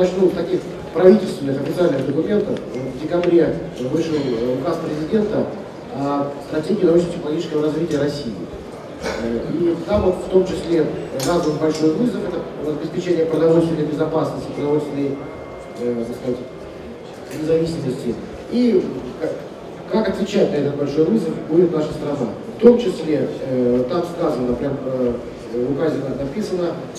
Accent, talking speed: native, 120 wpm